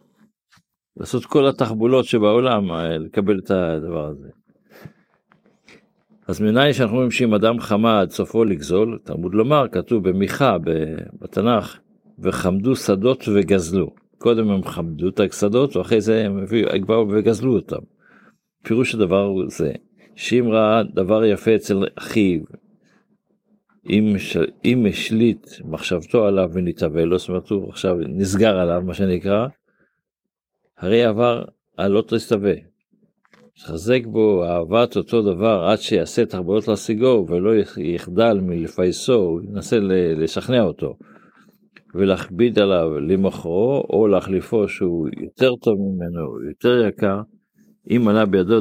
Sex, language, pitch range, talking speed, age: male, Hebrew, 95-120 Hz, 115 wpm, 50-69